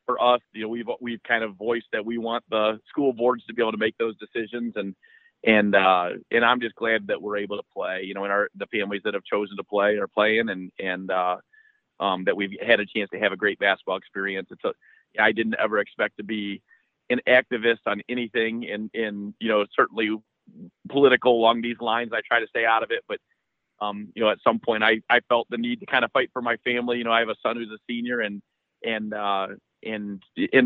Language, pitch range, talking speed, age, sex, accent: English, 105-120 Hz, 240 wpm, 40-59, male, American